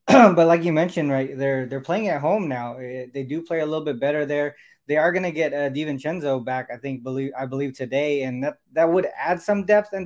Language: English